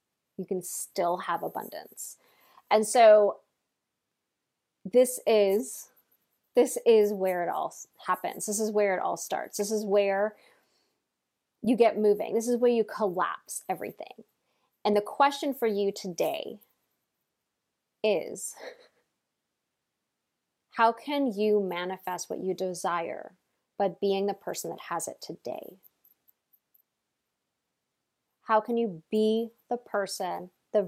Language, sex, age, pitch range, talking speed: English, female, 20-39, 195-230 Hz, 120 wpm